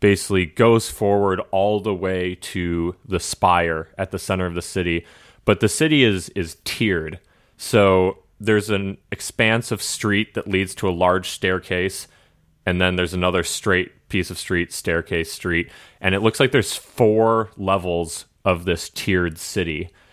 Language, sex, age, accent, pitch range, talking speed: English, male, 30-49, American, 90-100 Hz, 160 wpm